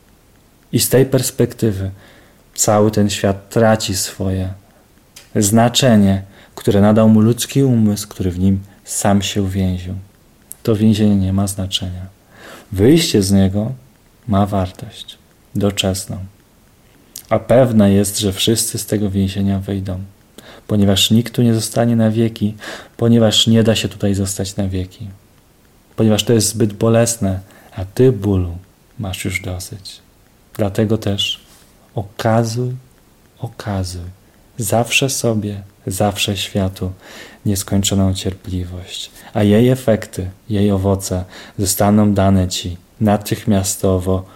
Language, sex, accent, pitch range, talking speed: Polish, male, native, 95-110 Hz, 115 wpm